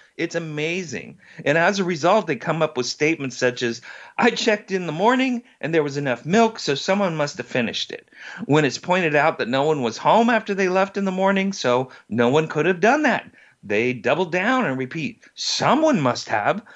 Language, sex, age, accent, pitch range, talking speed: English, male, 40-59, American, 125-190 Hz, 210 wpm